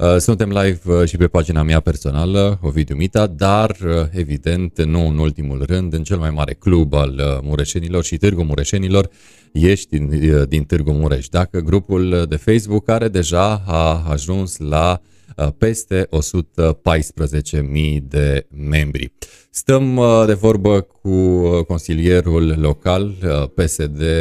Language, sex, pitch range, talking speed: Romanian, male, 75-95 Hz, 125 wpm